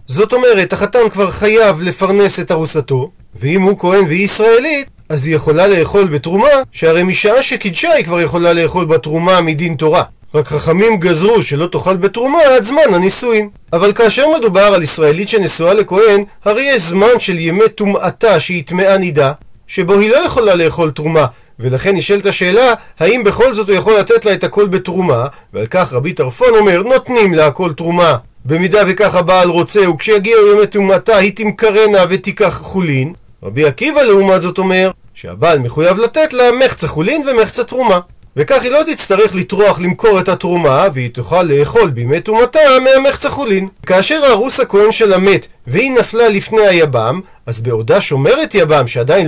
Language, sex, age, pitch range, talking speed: Hebrew, male, 40-59, 165-225 Hz, 165 wpm